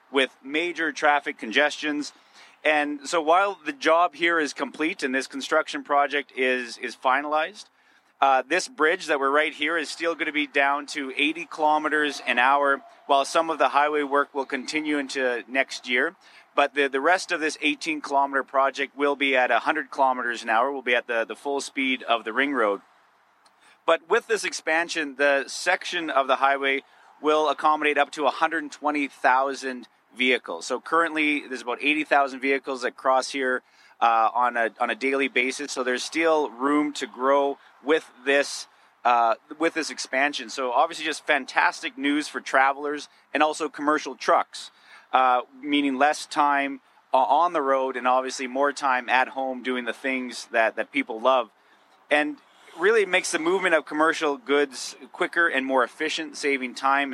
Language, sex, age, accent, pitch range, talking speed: English, male, 30-49, American, 130-155 Hz, 170 wpm